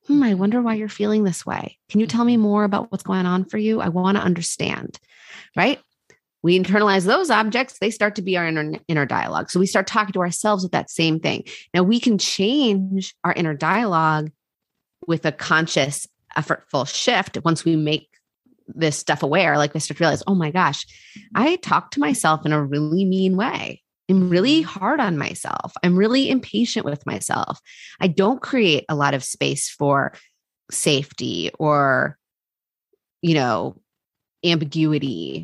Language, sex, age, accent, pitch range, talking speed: English, female, 30-49, American, 150-200 Hz, 175 wpm